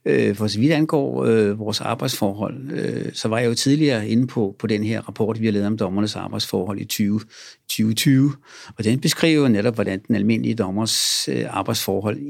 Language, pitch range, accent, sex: Danish, 105-125 Hz, native, male